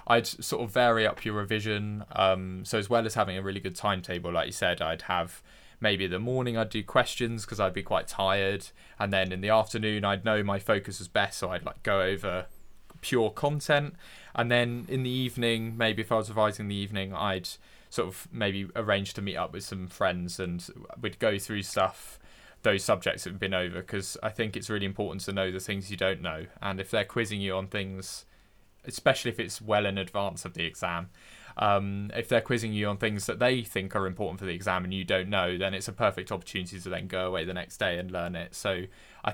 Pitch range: 95-115 Hz